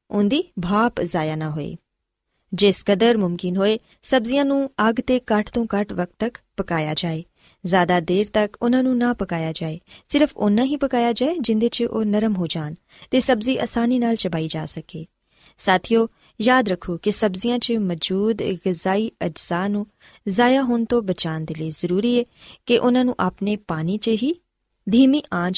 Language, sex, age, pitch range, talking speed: Punjabi, female, 20-39, 175-235 Hz, 150 wpm